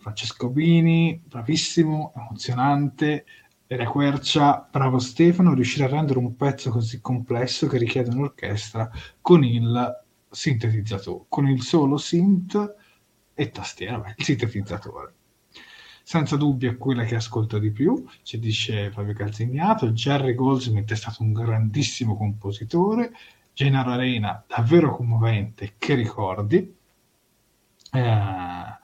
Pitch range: 110-145 Hz